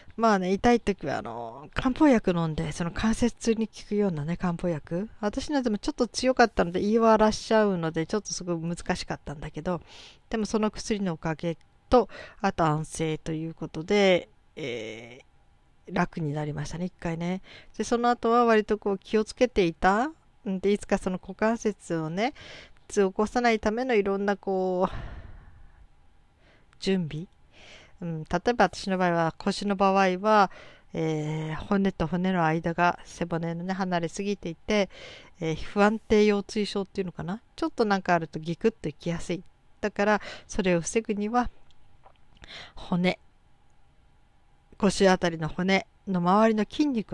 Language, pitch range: Japanese, 165-215 Hz